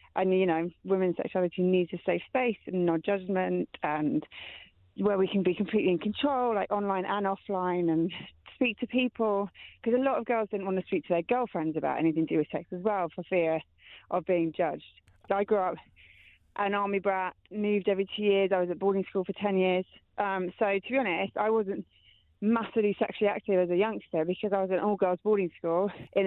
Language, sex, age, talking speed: English, female, 30-49, 210 wpm